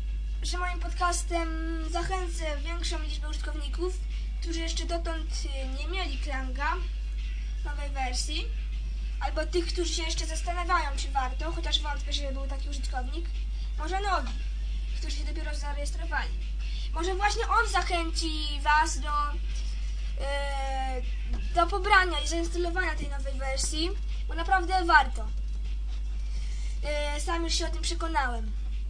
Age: 20-39